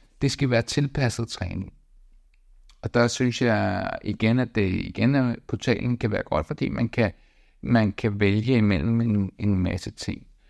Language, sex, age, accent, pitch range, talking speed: Danish, male, 60-79, native, 95-120 Hz, 155 wpm